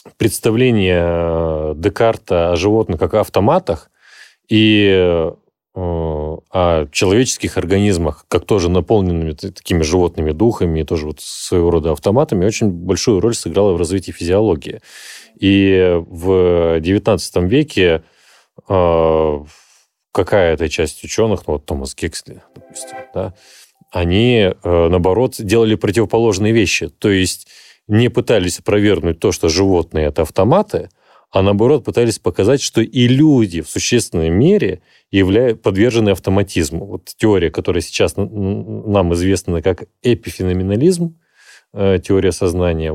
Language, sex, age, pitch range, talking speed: Russian, male, 30-49, 85-110 Hz, 115 wpm